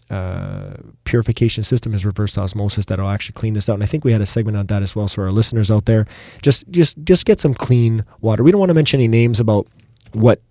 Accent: American